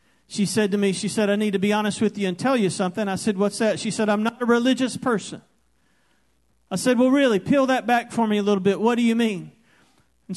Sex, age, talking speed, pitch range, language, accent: male, 40-59, 260 wpm, 185-225 Hz, English, American